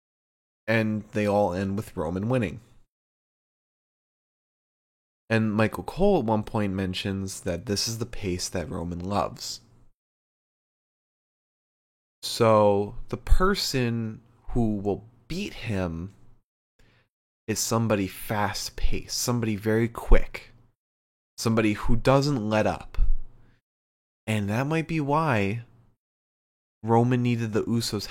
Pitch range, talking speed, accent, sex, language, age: 95-120 Hz, 105 wpm, American, male, English, 20-39